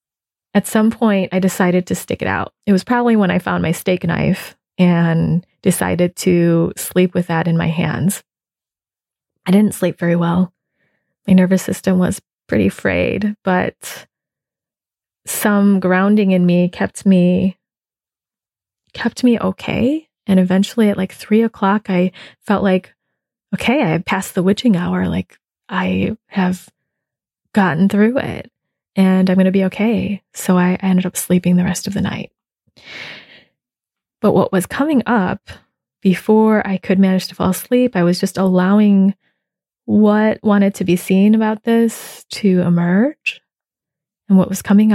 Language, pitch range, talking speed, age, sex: English, 180-215 Hz, 150 wpm, 20-39, female